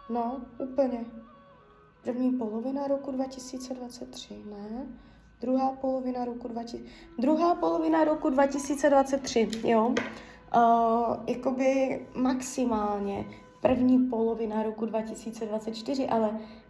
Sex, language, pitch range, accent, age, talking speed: female, Czech, 220-265 Hz, native, 20-39, 85 wpm